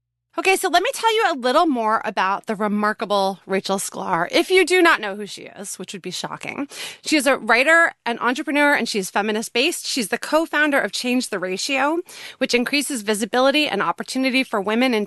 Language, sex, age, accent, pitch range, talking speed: English, female, 30-49, American, 200-275 Hz, 205 wpm